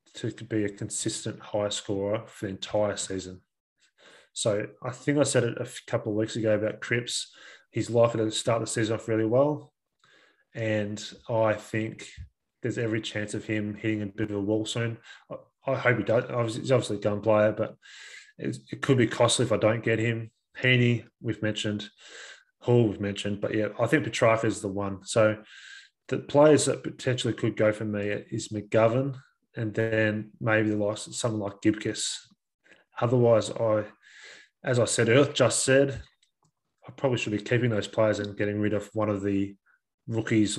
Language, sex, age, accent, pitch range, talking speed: English, male, 20-39, Australian, 105-120 Hz, 180 wpm